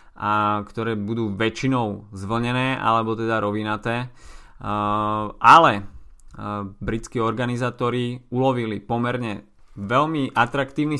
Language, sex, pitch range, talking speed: Slovak, male, 105-125 Hz, 80 wpm